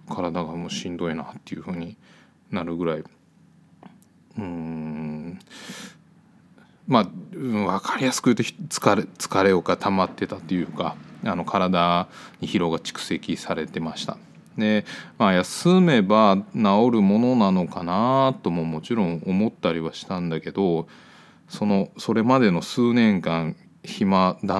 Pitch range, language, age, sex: 85-110 Hz, Japanese, 20-39, male